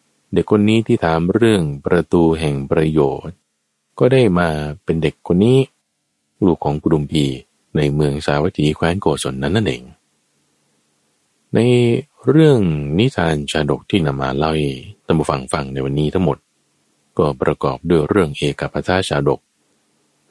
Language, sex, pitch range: Thai, male, 75-85 Hz